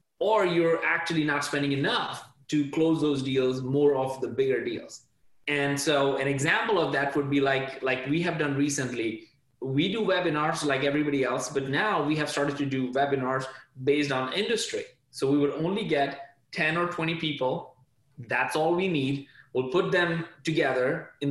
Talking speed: 180 wpm